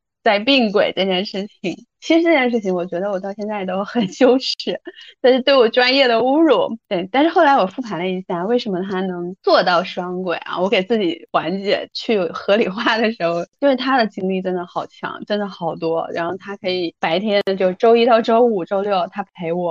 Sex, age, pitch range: female, 20-39, 175-240 Hz